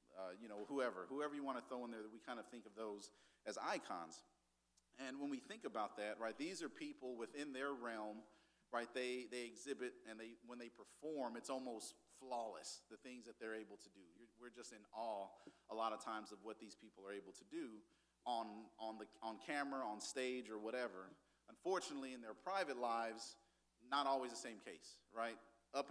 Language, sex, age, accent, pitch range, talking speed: English, male, 40-59, American, 110-140 Hz, 205 wpm